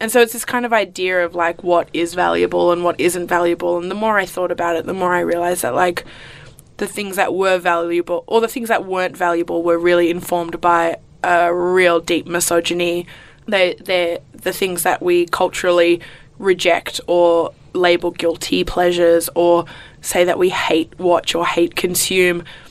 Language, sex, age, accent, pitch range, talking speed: English, female, 20-39, Australian, 170-190 Hz, 180 wpm